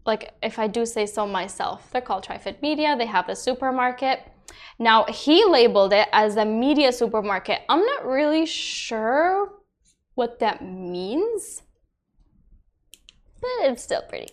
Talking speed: 140 wpm